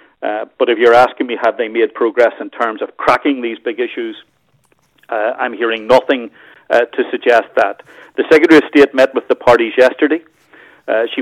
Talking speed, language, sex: 195 wpm, English, male